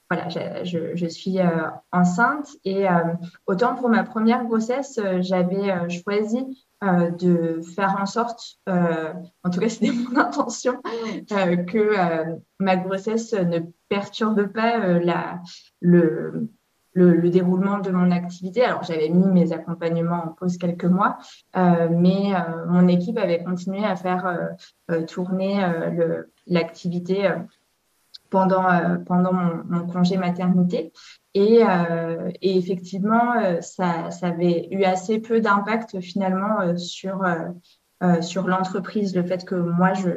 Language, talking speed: French, 145 wpm